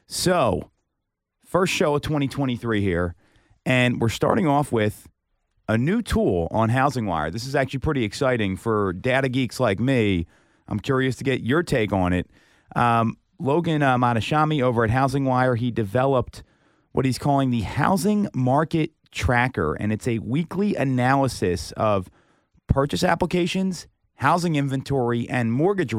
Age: 30-49